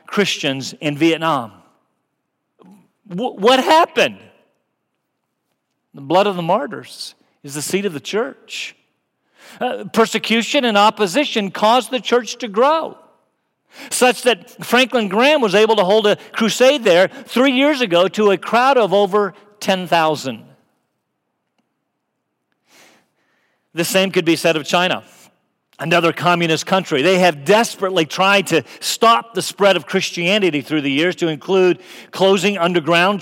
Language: English